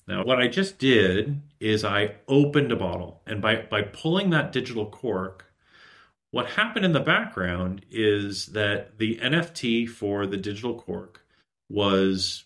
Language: English